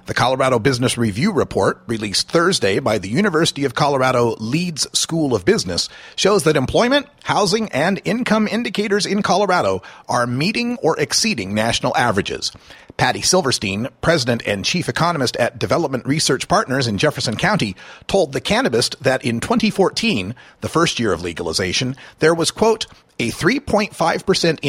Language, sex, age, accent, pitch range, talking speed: English, male, 40-59, American, 125-205 Hz, 145 wpm